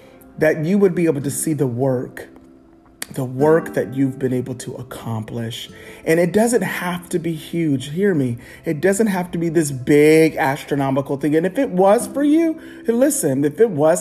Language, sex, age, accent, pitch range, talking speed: English, male, 30-49, American, 125-155 Hz, 195 wpm